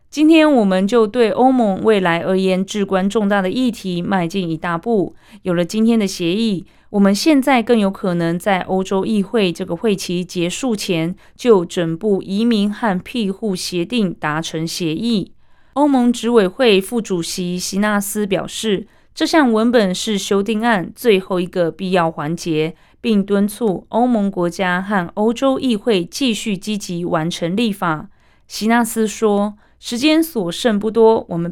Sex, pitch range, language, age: female, 175-225 Hz, Chinese, 20-39